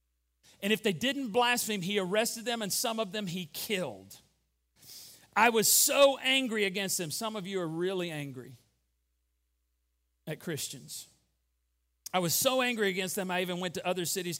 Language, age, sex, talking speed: English, 40-59, male, 165 wpm